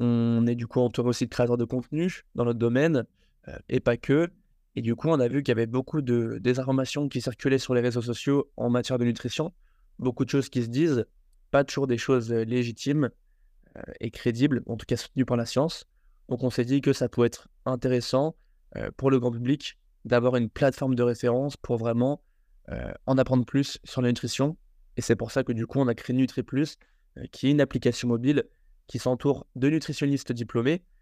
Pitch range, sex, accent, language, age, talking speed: 120-135 Hz, male, French, French, 20-39, 205 wpm